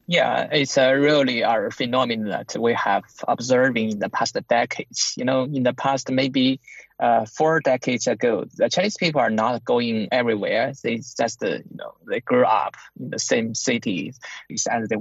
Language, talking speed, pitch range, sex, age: English, 170 wpm, 130-170 Hz, male, 20-39